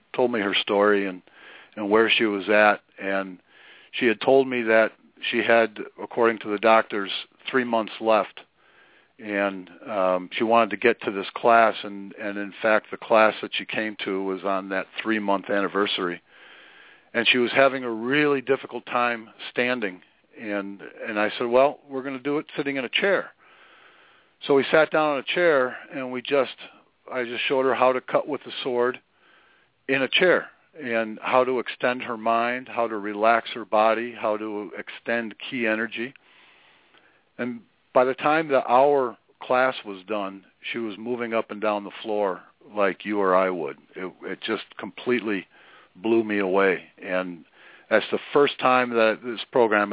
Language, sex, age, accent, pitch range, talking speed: English, male, 50-69, American, 105-125 Hz, 180 wpm